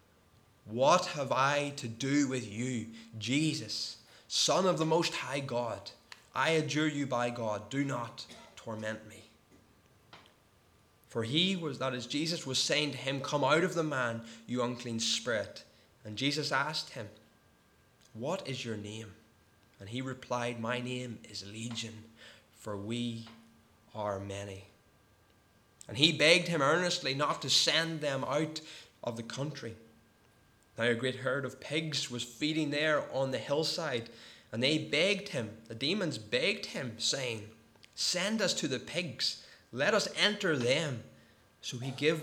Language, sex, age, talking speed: English, male, 20-39, 150 wpm